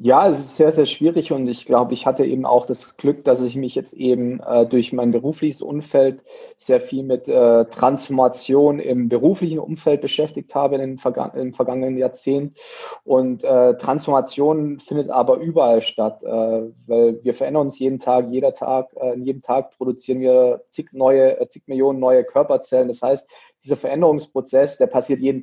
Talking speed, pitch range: 180 wpm, 125-150 Hz